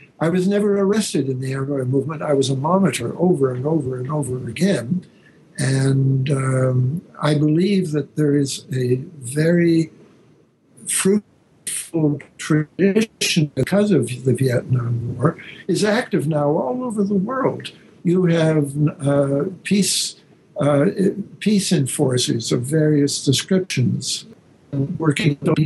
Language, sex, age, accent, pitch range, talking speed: English, male, 60-79, American, 135-175 Hz, 125 wpm